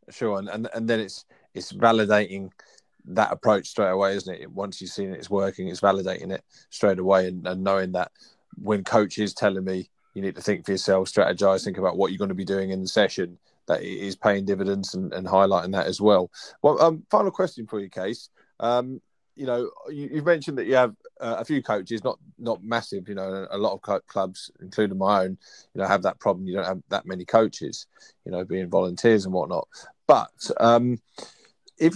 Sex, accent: male, British